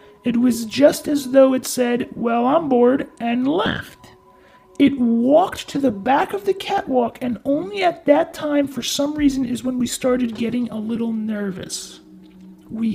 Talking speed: 170 wpm